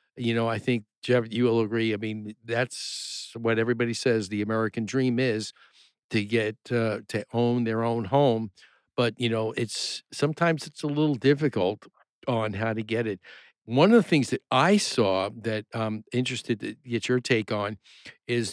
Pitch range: 110-130 Hz